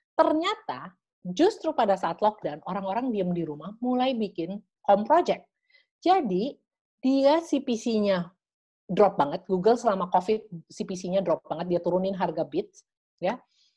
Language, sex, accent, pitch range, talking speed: Indonesian, female, native, 180-250 Hz, 130 wpm